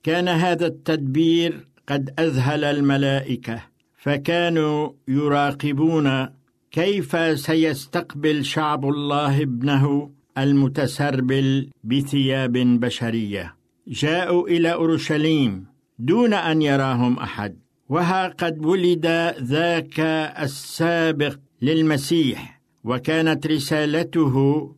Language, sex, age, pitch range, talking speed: Arabic, male, 60-79, 140-165 Hz, 75 wpm